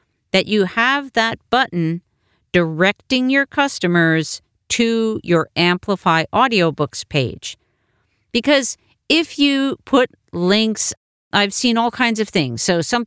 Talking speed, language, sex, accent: 120 wpm, English, female, American